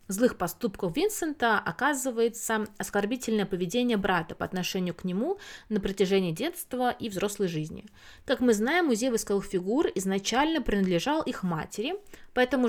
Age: 20-39